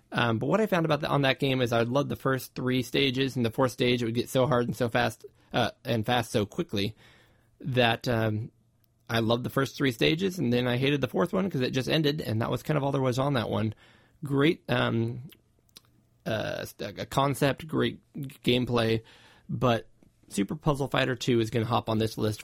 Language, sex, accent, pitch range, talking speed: English, male, American, 110-130 Hz, 225 wpm